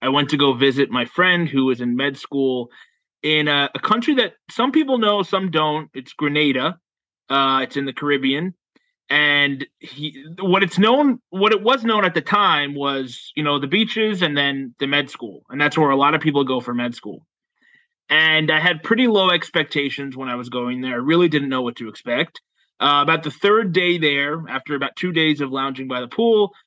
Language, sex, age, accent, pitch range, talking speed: English, male, 20-39, American, 140-195 Hz, 210 wpm